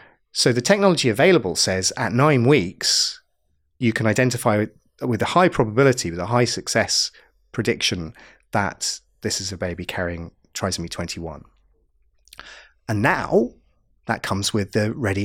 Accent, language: British, English